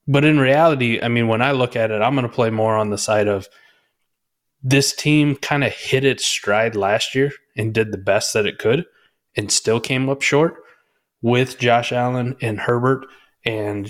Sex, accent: male, American